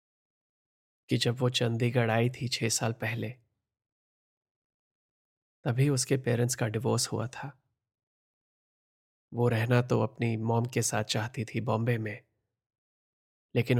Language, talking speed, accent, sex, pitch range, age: Hindi, 120 wpm, native, male, 110-125 Hz, 20-39